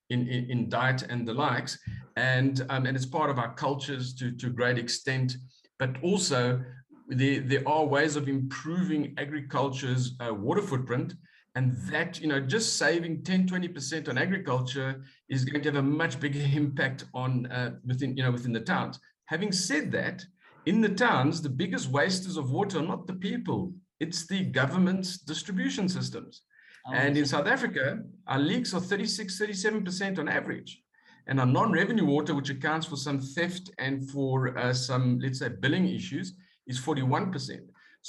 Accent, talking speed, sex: South African, 170 wpm, male